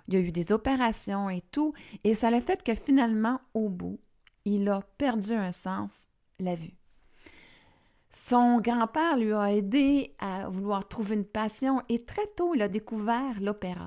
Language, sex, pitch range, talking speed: French, female, 185-235 Hz, 175 wpm